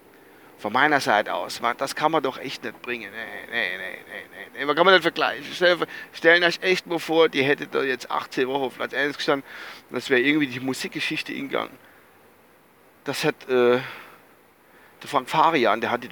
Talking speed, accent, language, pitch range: 190 wpm, German, German, 145-195 Hz